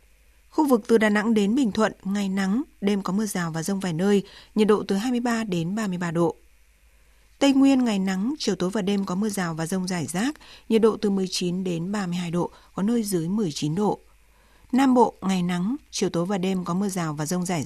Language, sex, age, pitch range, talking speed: Vietnamese, female, 20-39, 175-220 Hz, 225 wpm